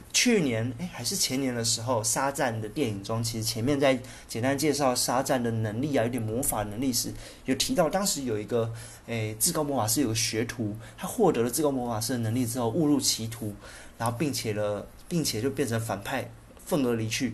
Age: 20-39